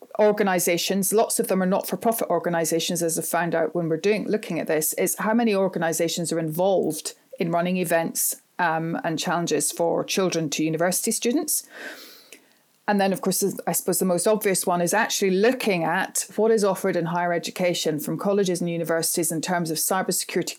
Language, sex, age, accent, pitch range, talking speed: English, female, 40-59, British, 165-200 Hz, 185 wpm